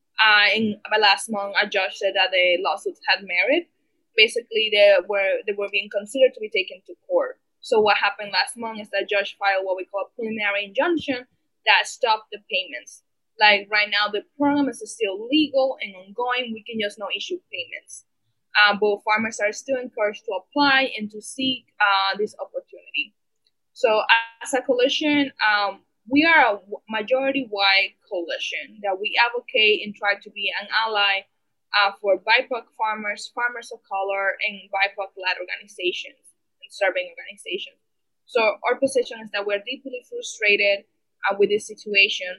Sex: female